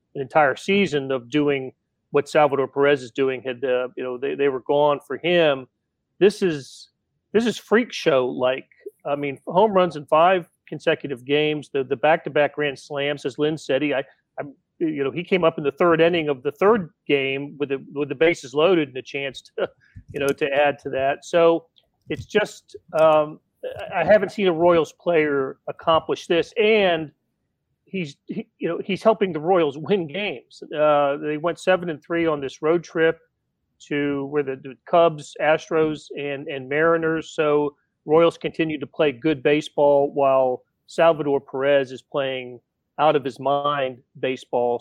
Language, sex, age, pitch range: English, male, 40-59, 140-175 Hz